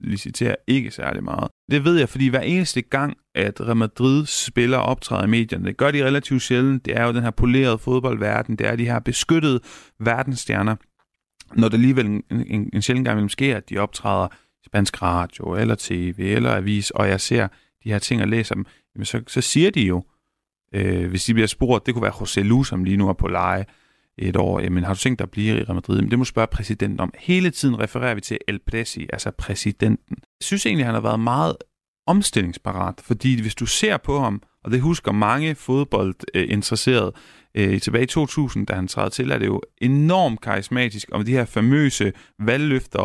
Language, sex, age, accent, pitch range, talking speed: Danish, male, 30-49, native, 100-130 Hz, 210 wpm